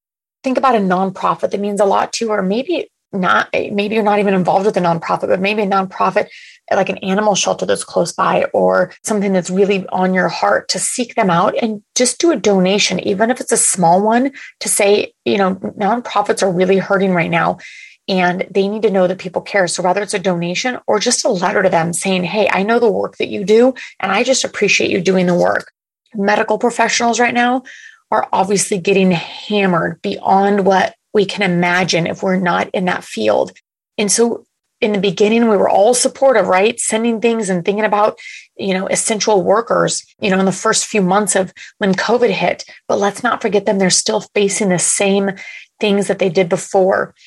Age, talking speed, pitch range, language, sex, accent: 30-49, 210 wpm, 190-225 Hz, English, female, American